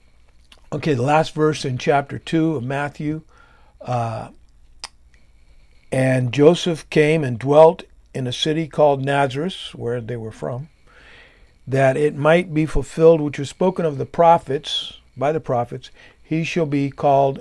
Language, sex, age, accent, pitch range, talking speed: English, male, 50-69, American, 115-145 Hz, 145 wpm